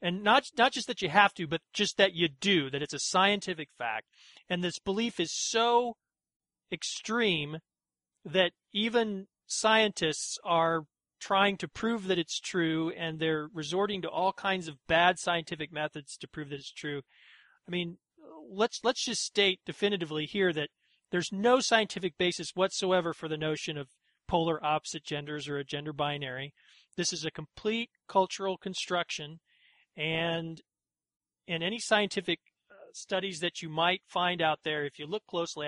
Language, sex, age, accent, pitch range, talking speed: English, male, 40-59, American, 155-200 Hz, 160 wpm